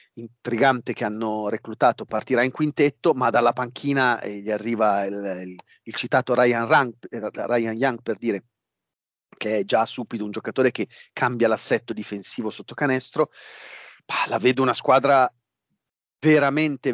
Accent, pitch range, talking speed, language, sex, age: native, 105-140 Hz, 150 wpm, Italian, male, 40-59